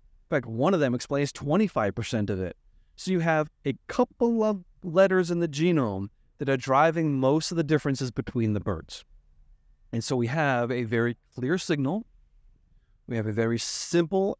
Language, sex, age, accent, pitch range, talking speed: English, male, 30-49, American, 120-180 Hz, 175 wpm